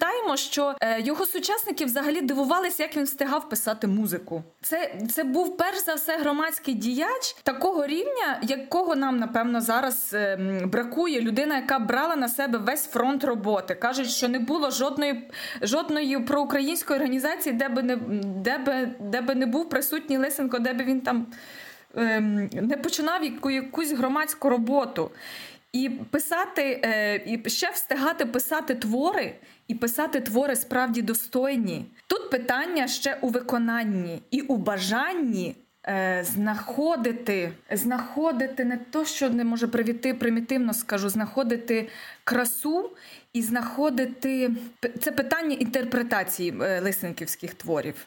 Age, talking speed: 20-39, 130 wpm